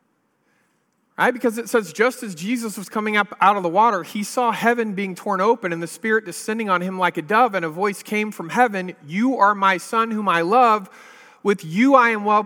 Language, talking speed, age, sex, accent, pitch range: English, 225 wpm, 40-59, male, American, 170-235 Hz